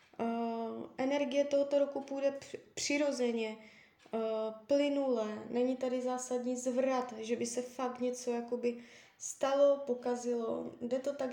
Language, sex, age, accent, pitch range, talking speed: Czech, female, 20-39, native, 225-260 Hz, 120 wpm